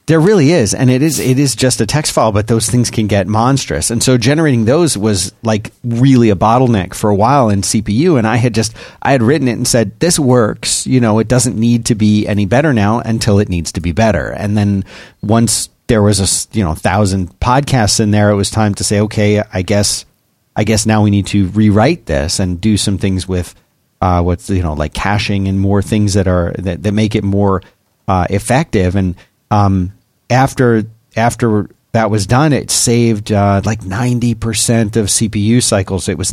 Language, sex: English, male